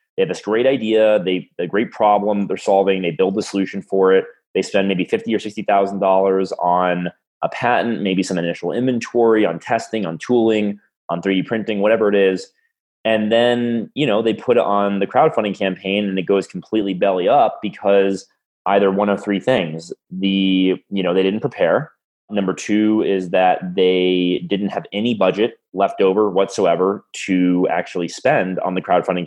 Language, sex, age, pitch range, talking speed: English, male, 20-39, 95-105 Hz, 185 wpm